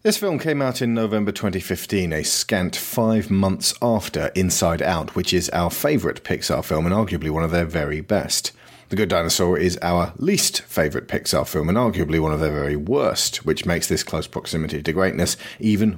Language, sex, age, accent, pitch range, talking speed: English, male, 40-59, British, 85-110 Hz, 190 wpm